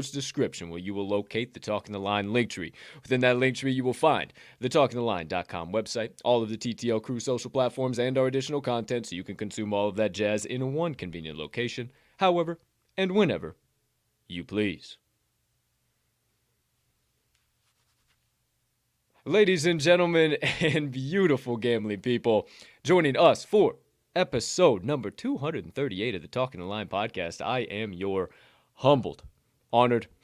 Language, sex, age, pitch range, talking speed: English, male, 20-39, 105-140 Hz, 145 wpm